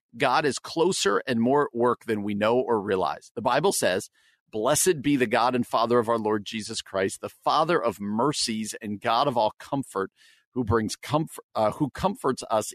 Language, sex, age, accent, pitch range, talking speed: English, male, 50-69, American, 105-130 Hz, 200 wpm